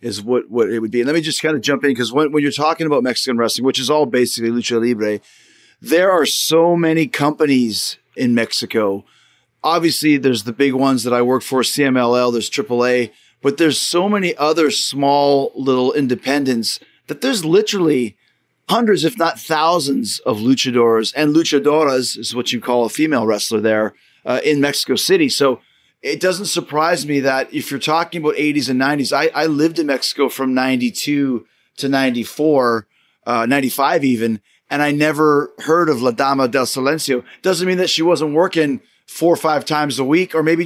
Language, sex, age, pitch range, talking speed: English, male, 30-49, 125-155 Hz, 185 wpm